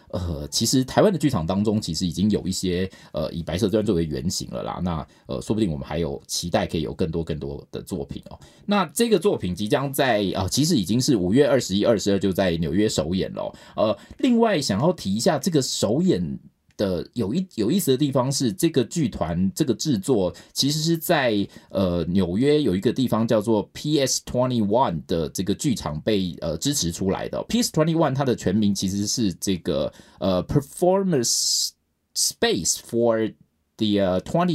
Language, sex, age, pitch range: Chinese, male, 20-39, 95-140 Hz